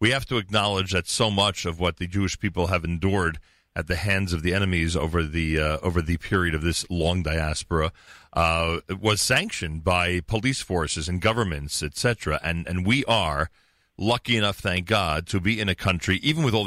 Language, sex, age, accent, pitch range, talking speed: English, male, 40-59, American, 90-120 Hz, 200 wpm